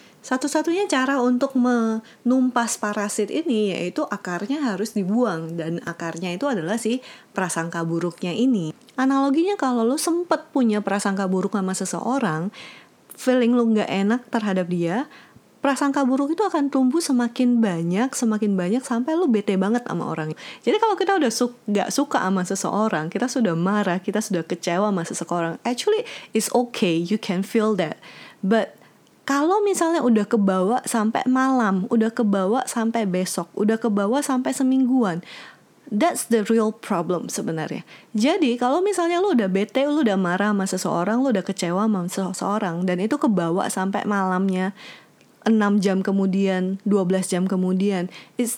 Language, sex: Indonesian, female